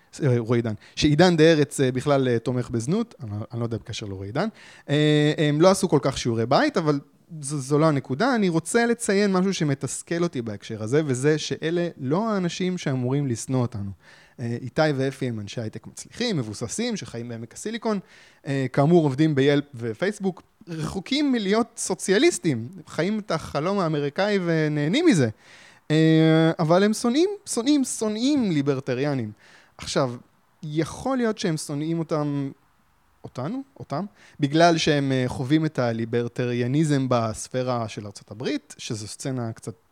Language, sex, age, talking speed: Hebrew, male, 20-39, 130 wpm